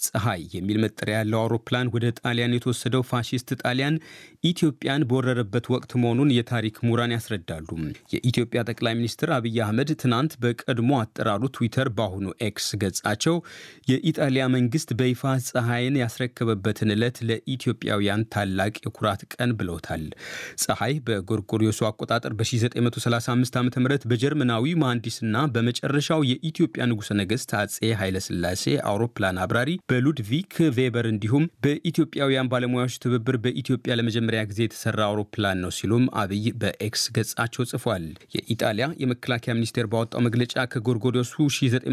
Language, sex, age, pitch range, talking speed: Amharic, male, 30-49, 110-130 Hz, 105 wpm